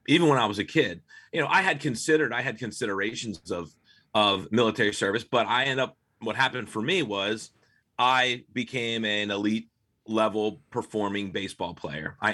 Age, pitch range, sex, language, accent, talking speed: 30-49, 105-125 Hz, male, English, American, 175 wpm